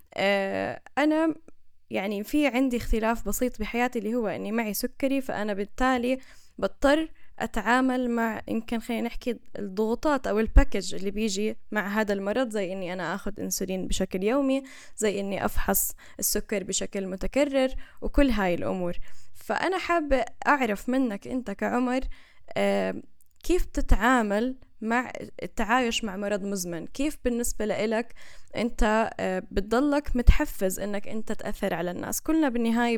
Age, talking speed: 10-29, 125 wpm